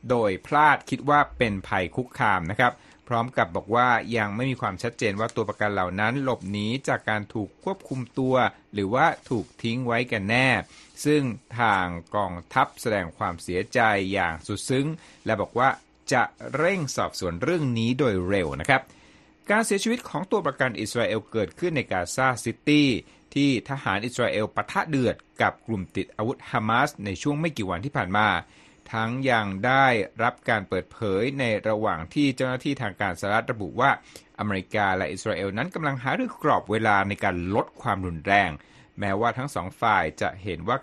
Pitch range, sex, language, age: 100-130 Hz, male, Thai, 60-79